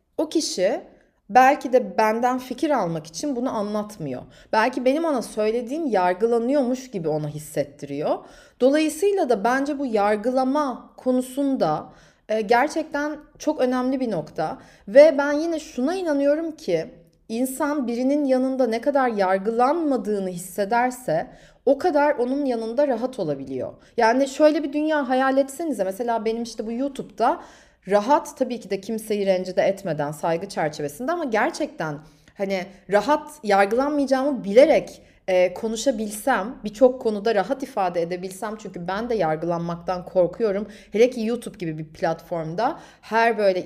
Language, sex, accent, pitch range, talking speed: Turkish, female, native, 190-275 Hz, 130 wpm